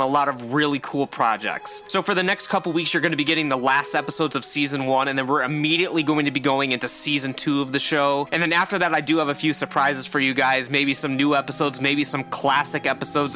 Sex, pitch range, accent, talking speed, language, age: male, 140-160 Hz, American, 260 wpm, English, 20-39